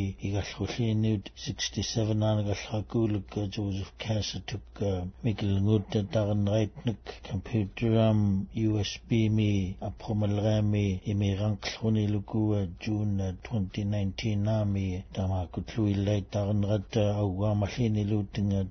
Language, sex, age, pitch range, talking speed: English, male, 60-79, 100-110 Hz, 105 wpm